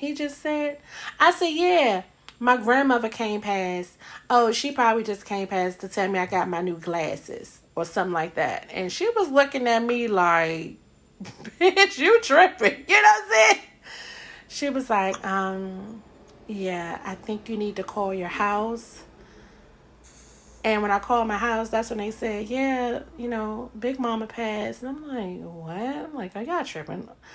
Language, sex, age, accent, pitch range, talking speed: English, female, 30-49, American, 185-235 Hz, 180 wpm